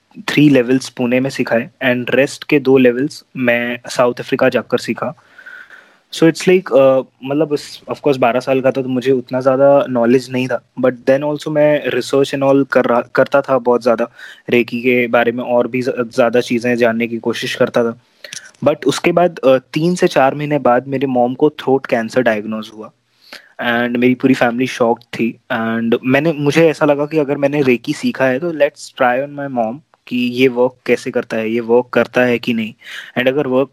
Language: English